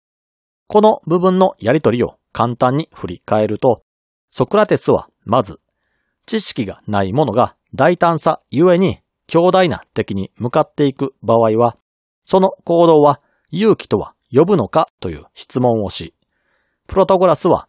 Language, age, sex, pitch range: Japanese, 40-59, male, 110-180 Hz